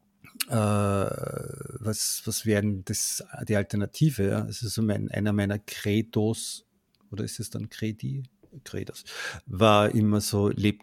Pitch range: 100-115 Hz